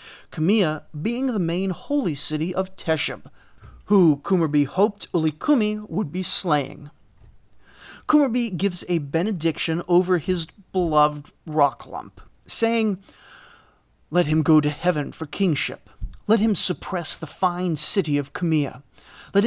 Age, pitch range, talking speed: 30-49, 150-200 Hz, 125 wpm